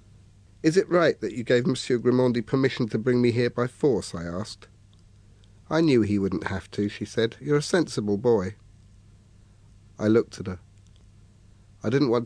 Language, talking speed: English, 175 wpm